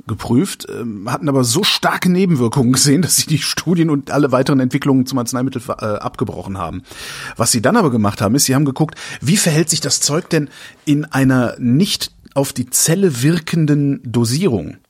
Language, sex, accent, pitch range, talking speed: German, male, German, 115-145 Hz, 175 wpm